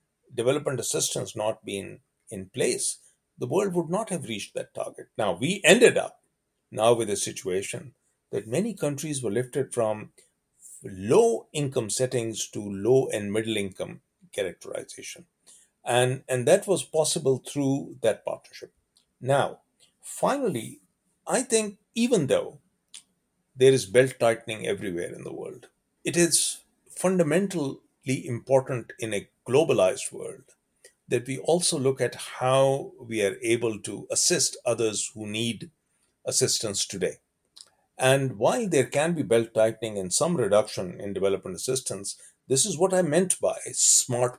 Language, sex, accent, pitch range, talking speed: English, male, Indian, 115-165 Hz, 140 wpm